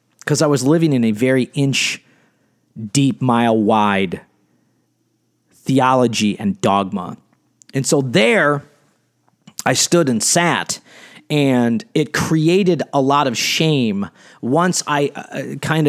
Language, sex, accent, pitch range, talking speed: English, male, American, 125-150 Hz, 115 wpm